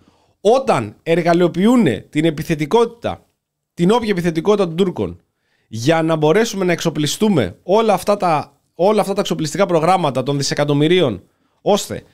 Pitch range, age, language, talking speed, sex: 140-190 Hz, 30-49, Greek, 125 wpm, male